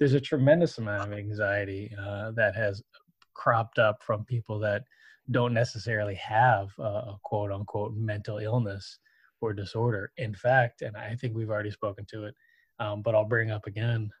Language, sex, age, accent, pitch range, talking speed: English, male, 20-39, American, 105-120 Hz, 175 wpm